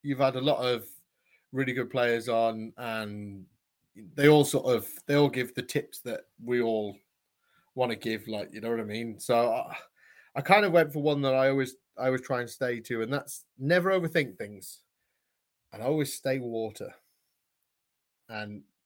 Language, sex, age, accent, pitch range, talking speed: English, male, 20-39, British, 115-140 Hz, 185 wpm